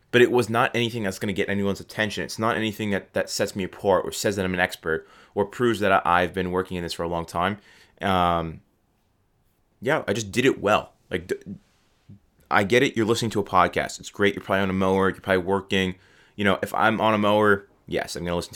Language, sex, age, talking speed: English, male, 20-39, 240 wpm